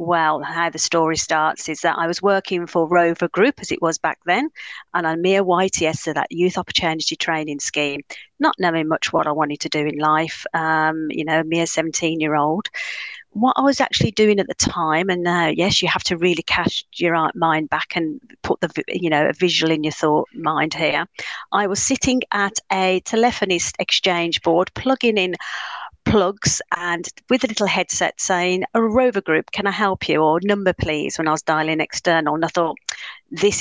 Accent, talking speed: British, 200 wpm